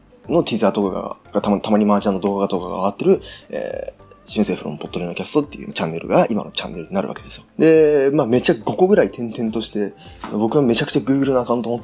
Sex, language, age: male, Japanese, 20-39